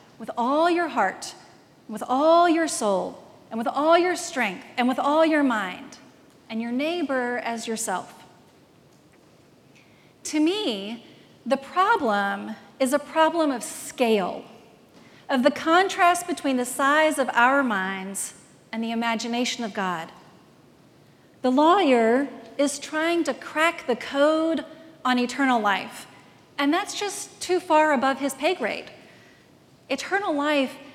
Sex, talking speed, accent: female, 130 wpm, American